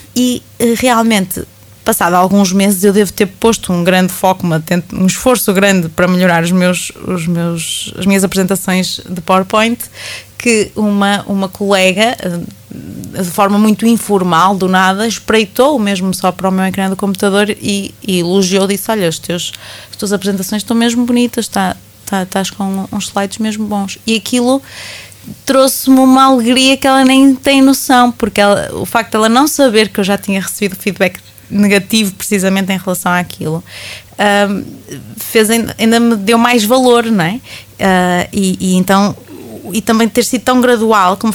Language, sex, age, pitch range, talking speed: Portuguese, female, 20-39, 185-230 Hz, 165 wpm